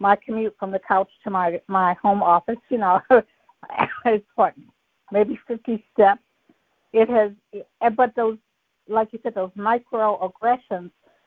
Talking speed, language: 140 wpm, English